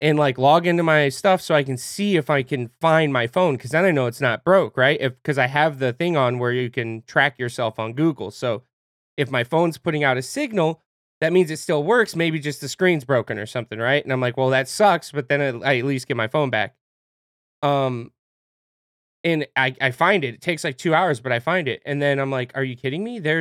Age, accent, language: 20-39, American, English